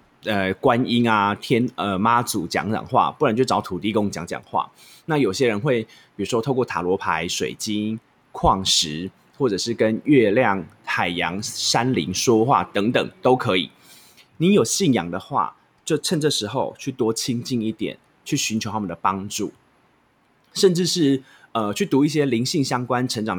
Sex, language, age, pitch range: male, Chinese, 20-39, 105-140 Hz